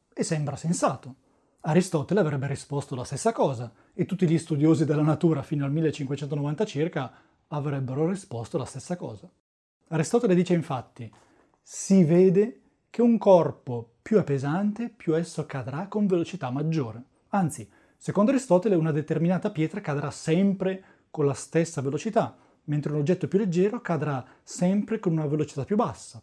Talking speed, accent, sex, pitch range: 150 wpm, native, male, 135-190 Hz